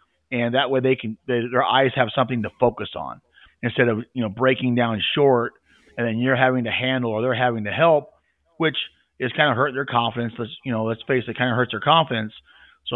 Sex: male